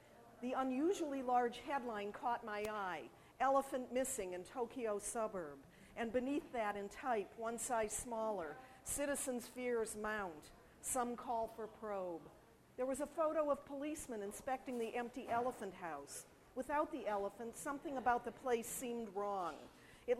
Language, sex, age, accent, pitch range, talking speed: English, female, 50-69, American, 210-255 Hz, 145 wpm